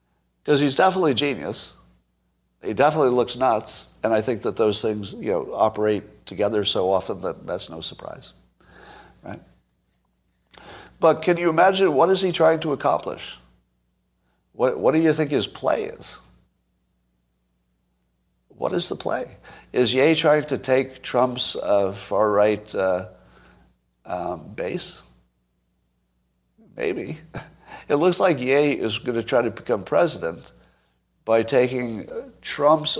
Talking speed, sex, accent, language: 135 wpm, male, American, English